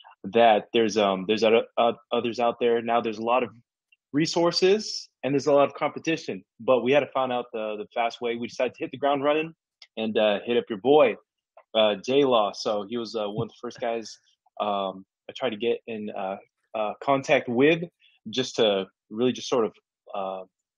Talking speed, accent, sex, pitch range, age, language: 210 wpm, American, male, 115-155 Hz, 20-39, English